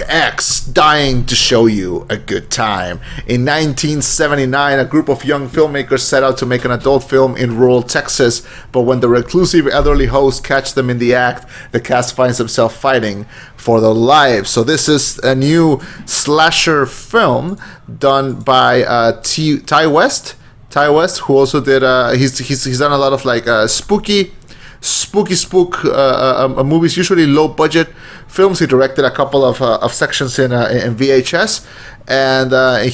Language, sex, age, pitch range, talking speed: English, male, 30-49, 125-155 Hz, 175 wpm